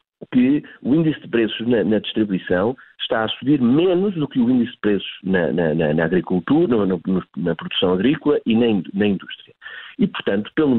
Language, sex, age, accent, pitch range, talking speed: Portuguese, male, 50-69, Portuguese, 100-135 Hz, 180 wpm